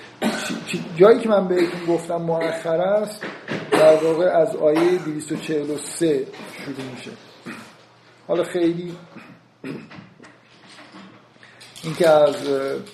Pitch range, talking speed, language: 150-175 Hz, 65 wpm, Persian